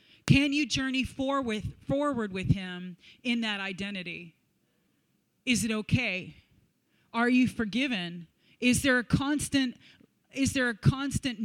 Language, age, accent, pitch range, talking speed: English, 30-49, American, 180-240 Hz, 120 wpm